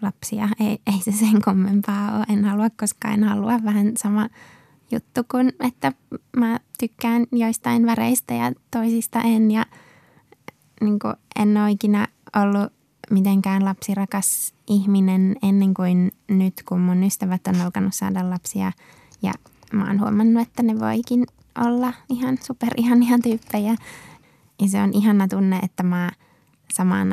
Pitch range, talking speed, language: 190-225 Hz, 140 wpm, Finnish